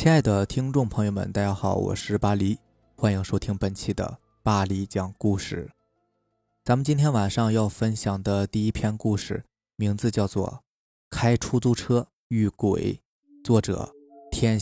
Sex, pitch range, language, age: male, 105-145 Hz, Chinese, 20-39